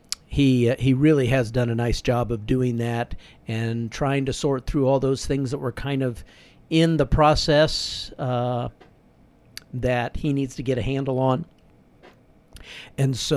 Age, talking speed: 50-69, 170 wpm